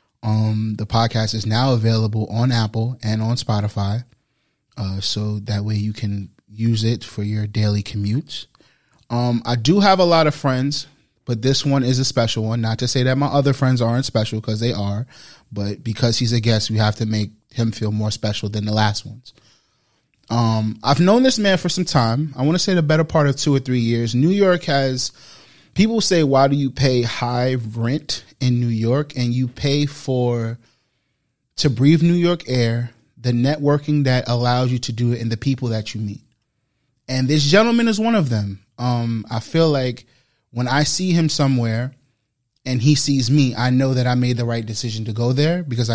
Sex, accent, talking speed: male, American, 205 wpm